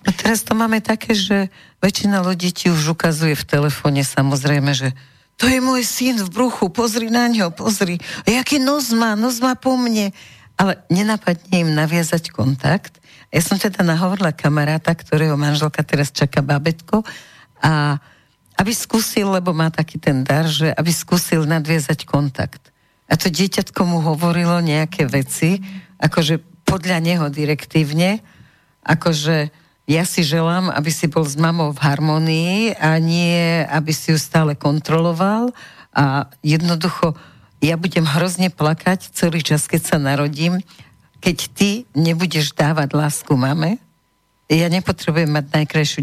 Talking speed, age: 145 wpm, 50-69